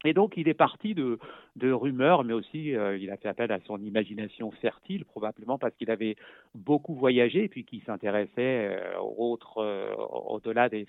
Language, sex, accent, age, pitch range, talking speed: French, male, French, 50-69, 105-130 Hz, 195 wpm